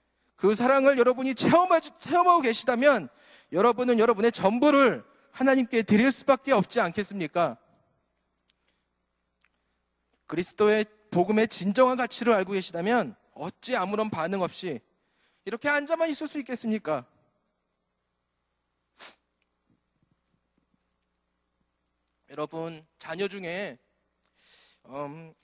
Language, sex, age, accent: Korean, male, 40-59, native